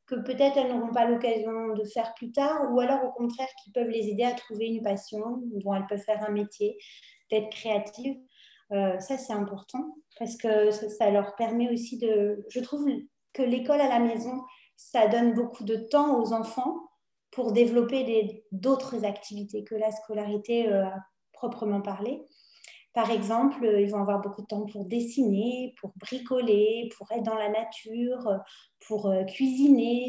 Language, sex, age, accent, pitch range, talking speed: French, female, 30-49, French, 210-255 Hz, 170 wpm